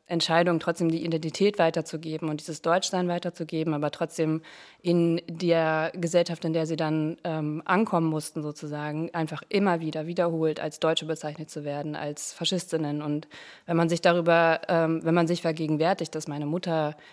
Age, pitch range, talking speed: 20-39, 155-170 Hz, 160 wpm